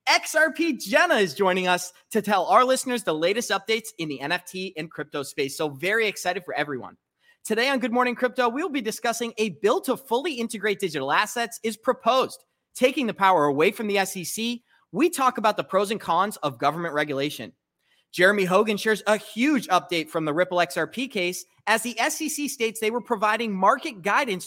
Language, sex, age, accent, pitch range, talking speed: English, male, 30-49, American, 180-240 Hz, 190 wpm